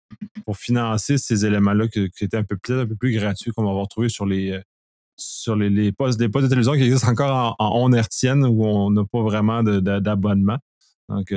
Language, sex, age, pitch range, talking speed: French, male, 20-39, 105-130 Hz, 190 wpm